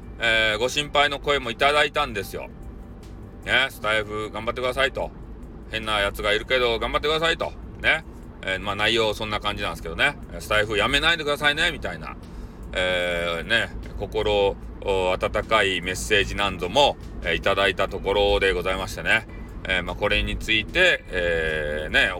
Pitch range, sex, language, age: 90-135 Hz, male, Japanese, 40-59